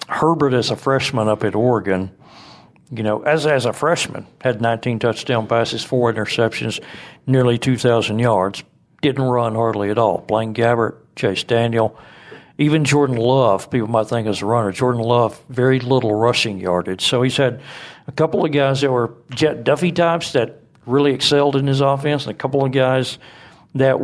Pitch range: 115-140 Hz